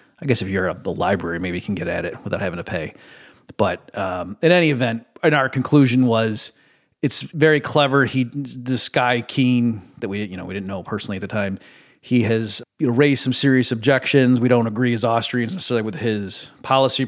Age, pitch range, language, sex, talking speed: 40-59, 110-135 Hz, English, male, 215 wpm